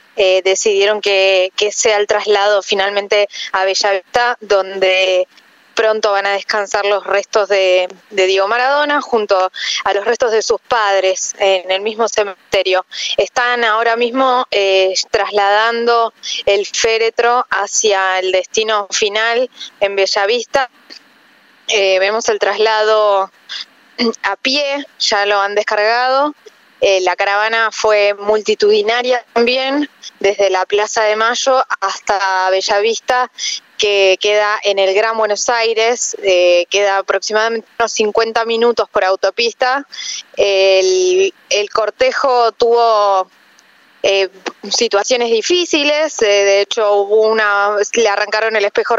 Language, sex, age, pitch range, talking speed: Spanish, female, 20-39, 195-235 Hz, 120 wpm